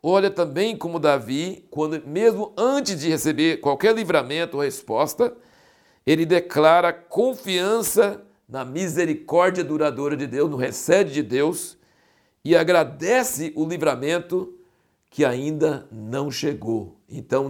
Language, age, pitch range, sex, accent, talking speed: Portuguese, 60-79, 150-205 Hz, male, Brazilian, 115 wpm